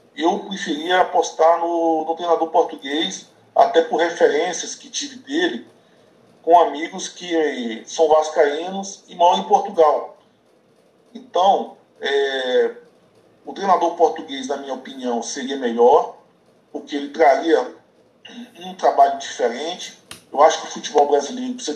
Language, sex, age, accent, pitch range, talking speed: Portuguese, male, 50-69, Brazilian, 140-230 Hz, 125 wpm